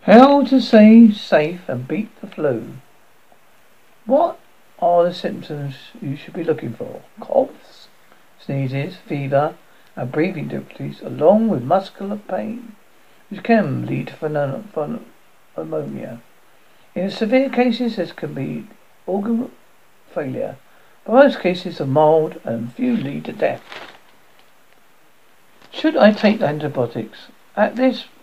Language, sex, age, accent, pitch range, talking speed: English, male, 60-79, British, 150-225 Hz, 120 wpm